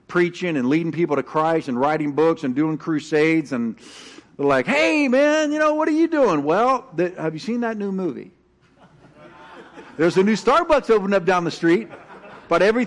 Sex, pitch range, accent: male, 120-175 Hz, American